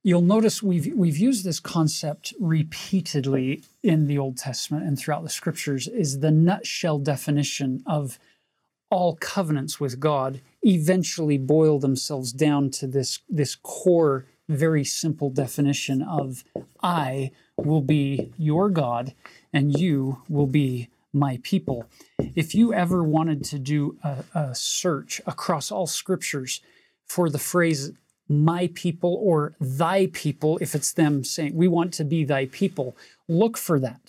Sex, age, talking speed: male, 40-59, 145 wpm